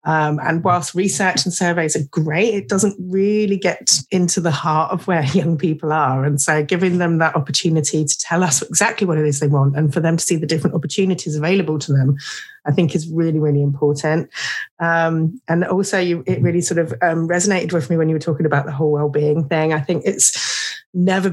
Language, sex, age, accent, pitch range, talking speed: English, female, 30-49, British, 155-180 Hz, 215 wpm